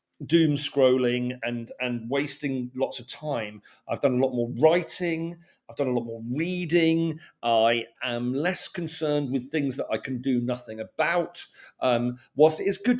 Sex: male